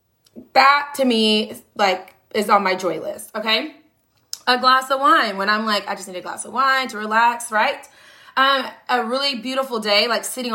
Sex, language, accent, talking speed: female, English, American, 195 wpm